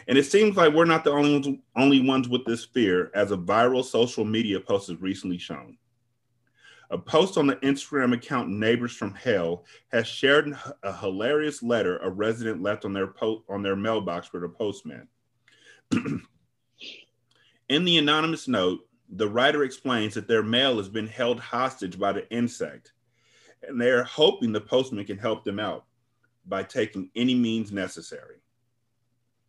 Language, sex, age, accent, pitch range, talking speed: English, male, 30-49, American, 110-130 Hz, 160 wpm